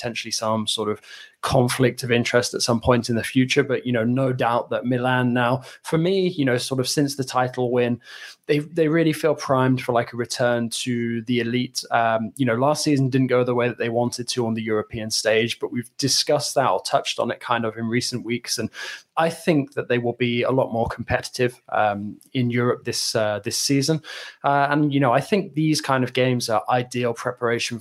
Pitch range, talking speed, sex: 115-130 Hz, 225 wpm, male